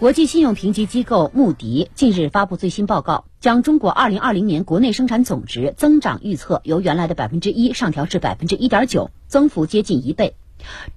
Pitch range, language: 165-255 Hz, Chinese